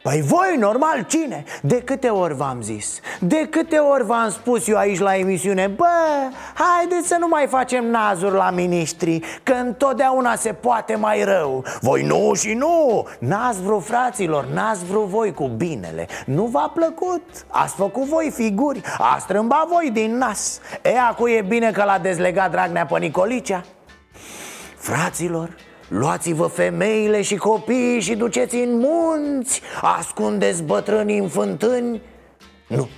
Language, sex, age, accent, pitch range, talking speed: Romanian, male, 30-49, native, 185-255 Hz, 145 wpm